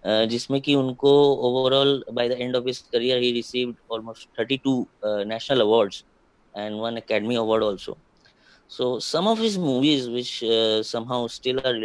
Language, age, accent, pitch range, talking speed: Hindi, 20-39, native, 110-130 Hz, 135 wpm